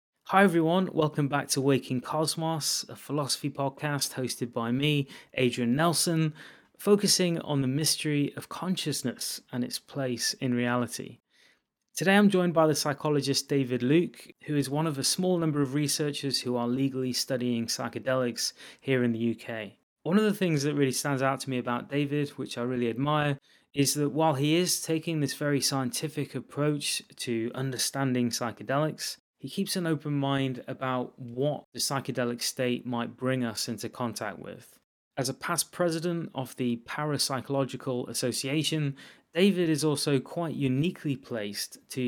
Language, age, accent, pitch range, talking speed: English, 30-49, British, 125-150 Hz, 160 wpm